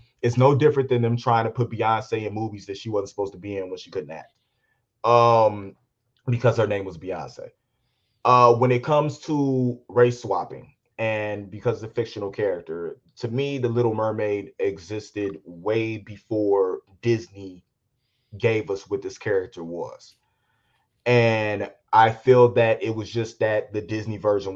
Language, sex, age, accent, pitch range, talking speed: English, male, 30-49, American, 110-130 Hz, 165 wpm